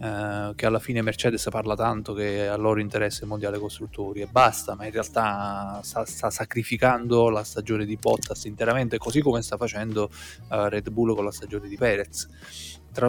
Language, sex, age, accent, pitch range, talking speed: Italian, male, 20-39, native, 105-120 Hz, 185 wpm